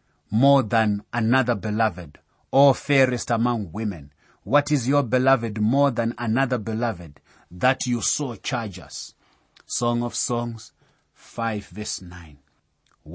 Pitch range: 105-135 Hz